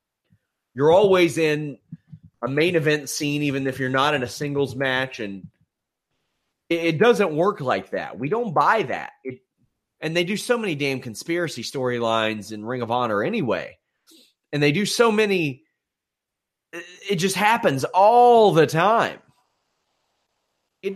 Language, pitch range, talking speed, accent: English, 125-170 Hz, 145 wpm, American